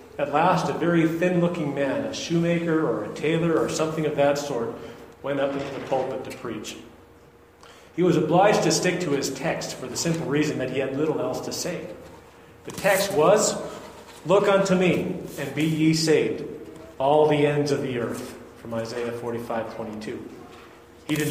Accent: American